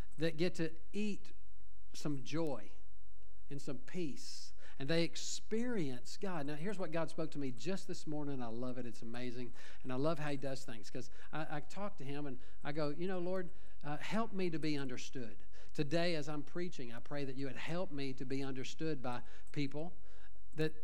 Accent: American